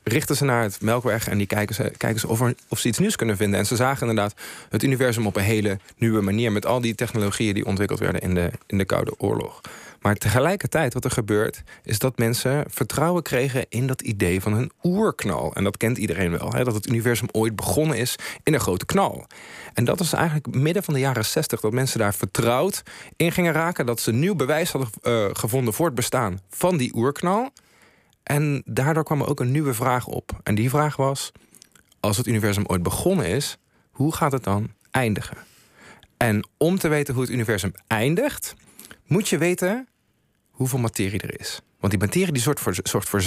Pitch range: 110-155 Hz